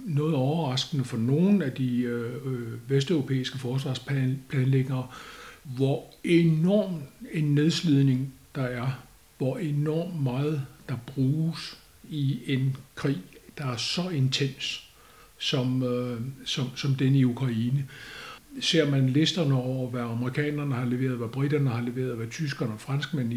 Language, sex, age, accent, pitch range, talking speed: Danish, male, 60-79, native, 130-160 Hz, 130 wpm